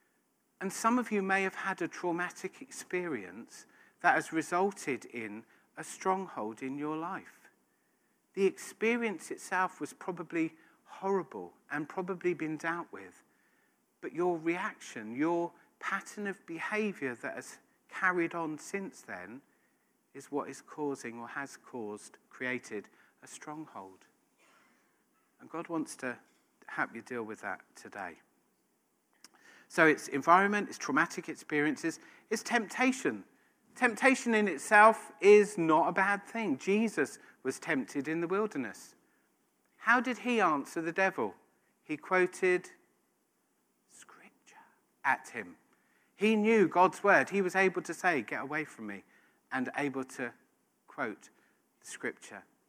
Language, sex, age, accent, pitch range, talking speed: English, male, 50-69, British, 150-200 Hz, 130 wpm